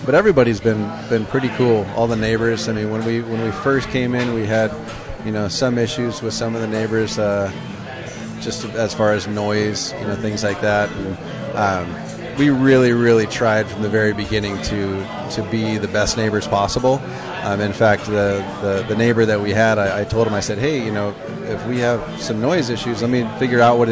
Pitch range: 105-125 Hz